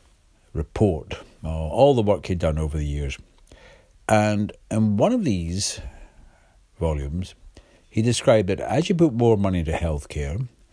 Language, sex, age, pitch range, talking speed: English, male, 60-79, 80-105 Hz, 140 wpm